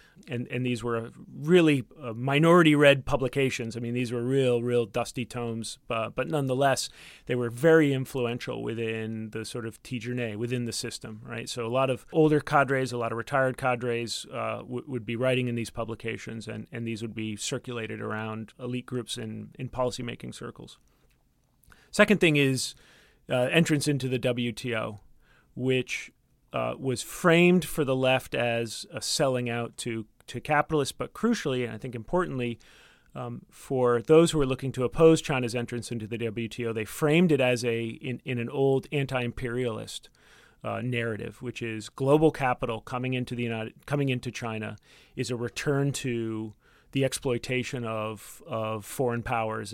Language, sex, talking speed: English, male, 165 wpm